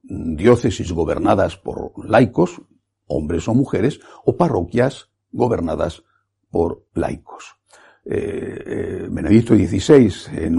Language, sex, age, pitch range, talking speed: Spanish, male, 60-79, 100-150 Hz, 95 wpm